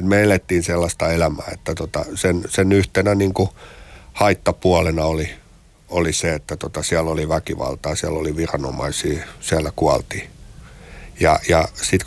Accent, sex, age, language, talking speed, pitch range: native, male, 60-79, Finnish, 135 wpm, 80-100 Hz